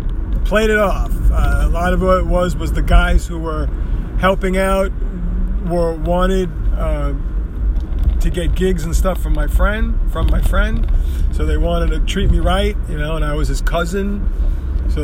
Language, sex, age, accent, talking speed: English, male, 40-59, American, 185 wpm